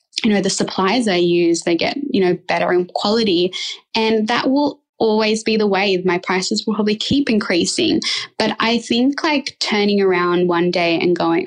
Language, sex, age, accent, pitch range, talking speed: English, female, 10-29, Australian, 185-245 Hz, 190 wpm